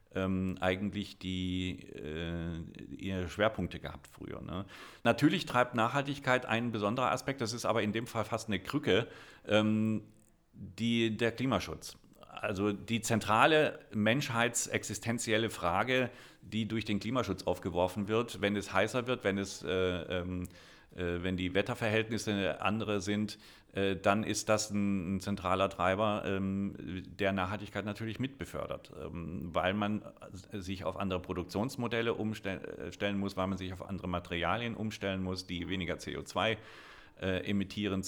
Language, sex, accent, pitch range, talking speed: German, male, German, 90-110 Hz, 125 wpm